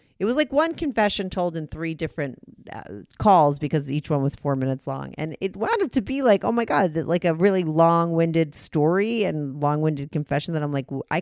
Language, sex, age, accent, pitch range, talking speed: English, female, 40-59, American, 150-220 Hz, 225 wpm